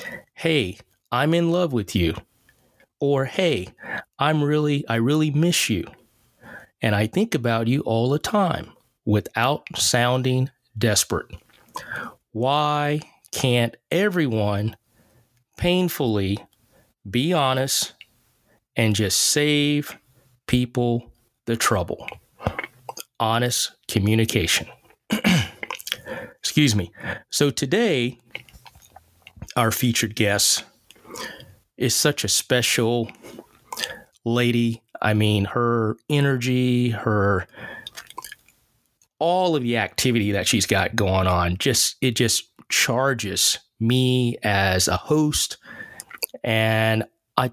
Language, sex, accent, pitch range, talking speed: English, male, American, 110-135 Hz, 95 wpm